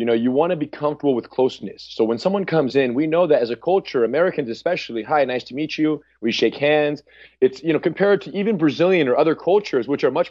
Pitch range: 140-190 Hz